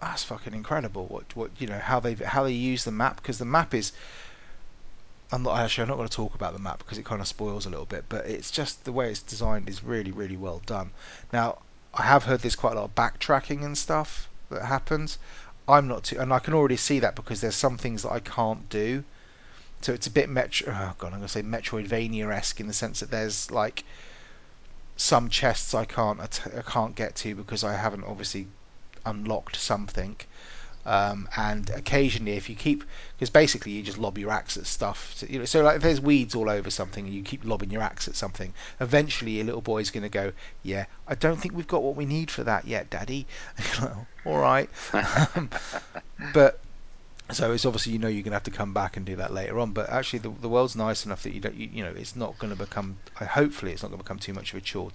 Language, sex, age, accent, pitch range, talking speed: English, male, 30-49, British, 100-130 Hz, 235 wpm